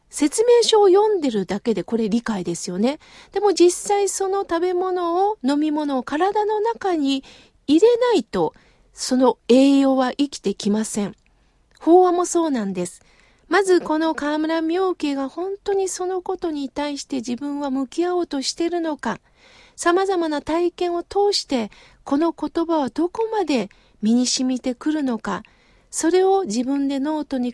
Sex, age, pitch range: female, 40-59, 225-340 Hz